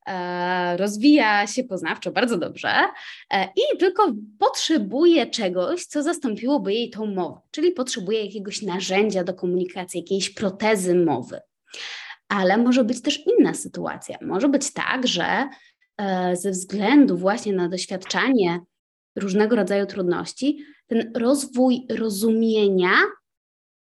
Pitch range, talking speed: 190-275 Hz, 110 wpm